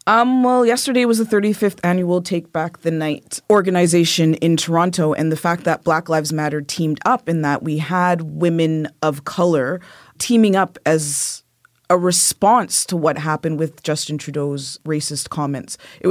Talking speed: 165 wpm